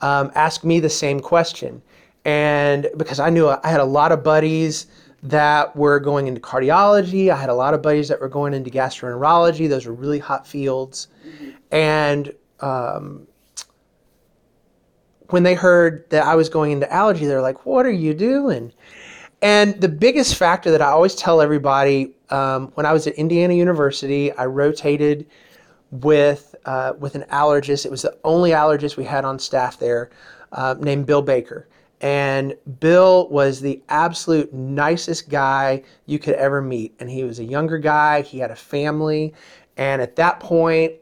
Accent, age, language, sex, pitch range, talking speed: American, 30-49, English, male, 140-160 Hz, 170 wpm